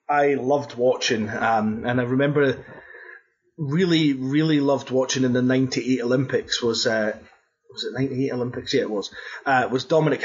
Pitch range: 125-150 Hz